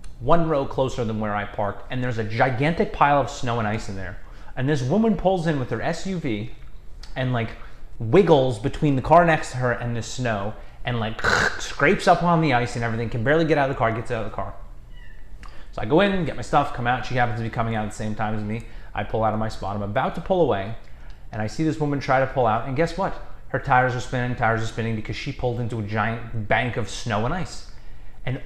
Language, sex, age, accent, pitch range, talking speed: English, male, 30-49, American, 110-165 Hz, 260 wpm